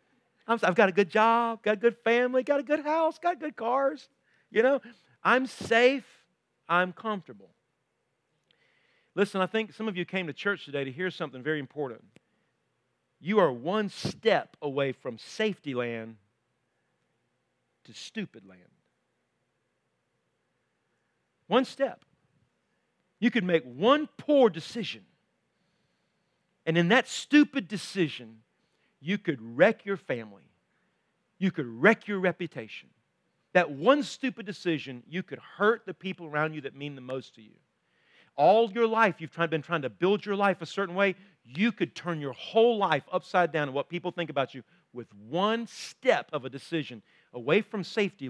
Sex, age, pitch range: male, 50-69, 145-225 Hz